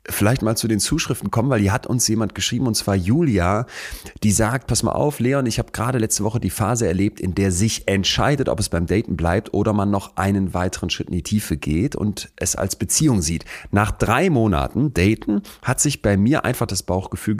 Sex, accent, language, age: male, German, German, 30-49